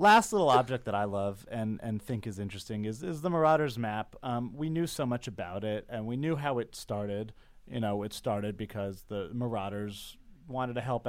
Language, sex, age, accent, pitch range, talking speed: English, male, 30-49, American, 105-135 Hz, 210 wpm